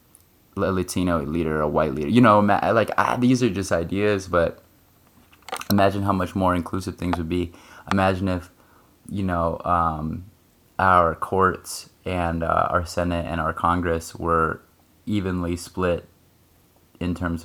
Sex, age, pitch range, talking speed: male, 20-39, 80-95 Hz, 140 wpm